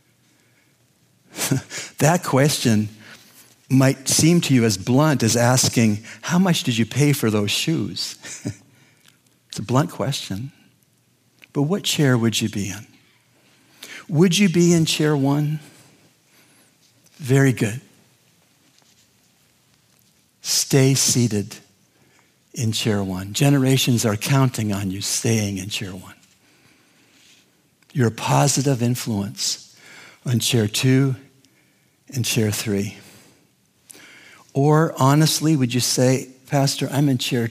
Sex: male